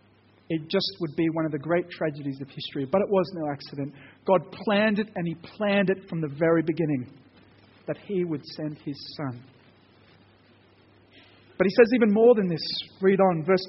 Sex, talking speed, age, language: male, 190 wpm, 40-59, English